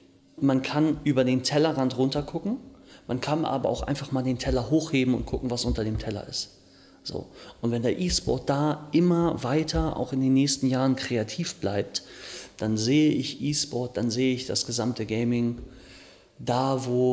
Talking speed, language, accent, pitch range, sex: 175 wpm, German, German, 115-140 Hz, male